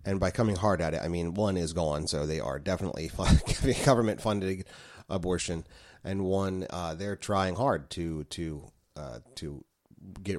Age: 30-49